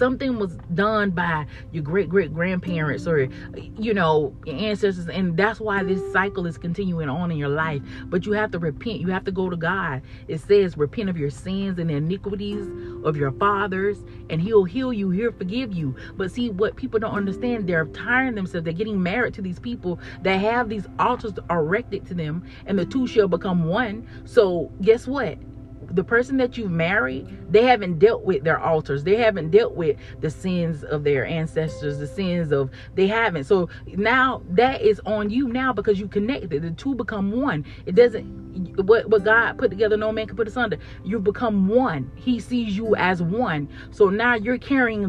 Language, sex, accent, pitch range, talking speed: English, female, American, 160-225 Hz, 195 wpm